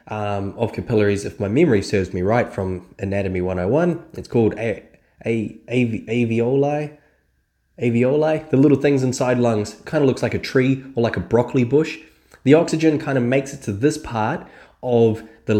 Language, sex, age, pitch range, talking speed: English, male, 20-39, 105-140 Hz, 180 wpm